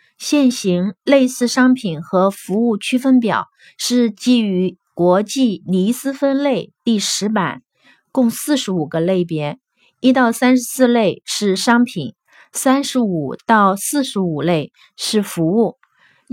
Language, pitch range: Chinese, 185-245 Hz